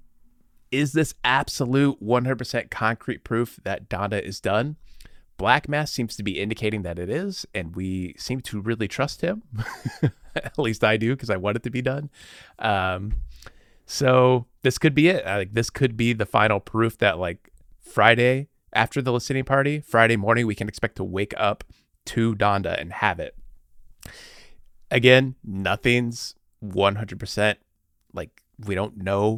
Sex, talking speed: male, 160 wpm